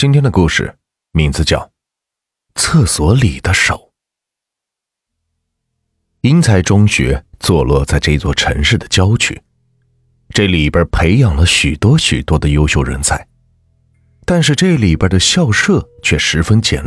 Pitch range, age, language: 80-120 Hz, 30-49, Chinese